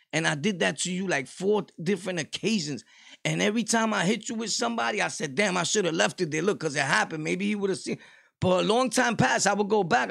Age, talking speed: 30-49, 265 wpm